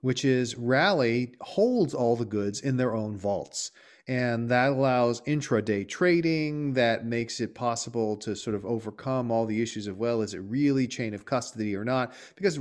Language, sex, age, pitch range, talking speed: English, male, 40-59, 110-135 Hz, 180 wpm